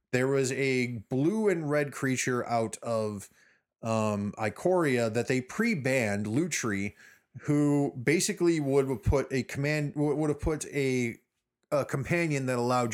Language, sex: English, male